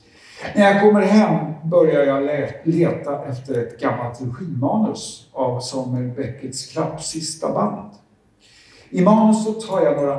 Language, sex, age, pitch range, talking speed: Swedish, male, 50-69, 130-175 Hz, 125 wpm